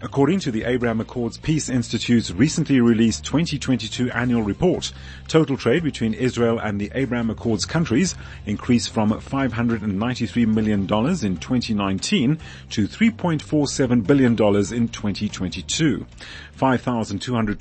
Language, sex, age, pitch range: English, male, 40-59, 100-130 Hz